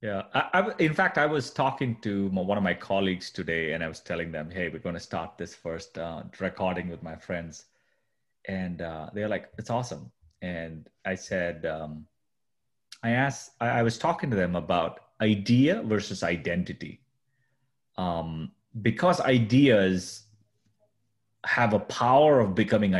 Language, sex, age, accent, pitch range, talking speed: English, male, 30-49, Indian, 90-120 Hz, 160 wpm